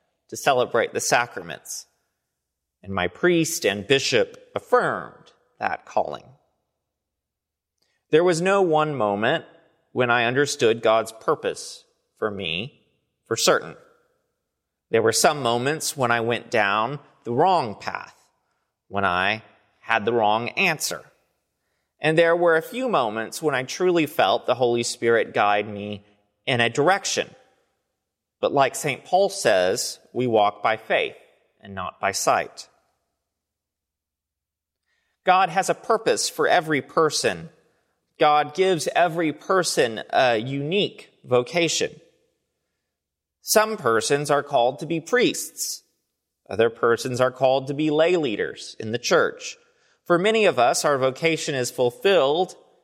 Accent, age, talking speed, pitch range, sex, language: American, 30-49, 130 wpm, 115-185 Hz, male, English